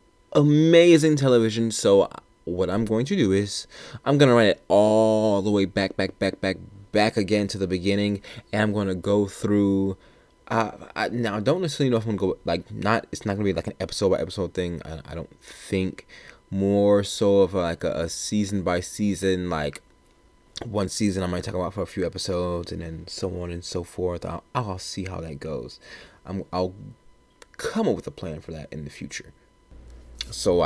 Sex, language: male, English